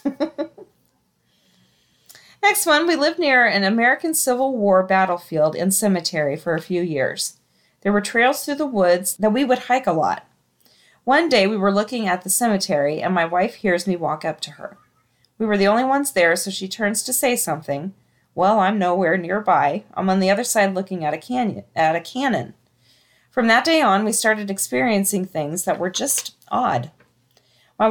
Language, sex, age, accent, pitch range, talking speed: English, female, 40-59, American, 170-225 Hz, 185 wpm